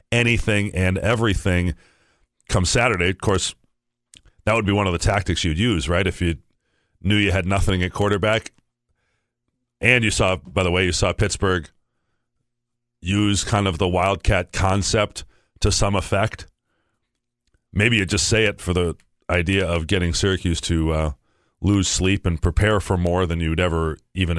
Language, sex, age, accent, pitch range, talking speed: English, male, 40-59, American, 85-105 Hz, 160 wpm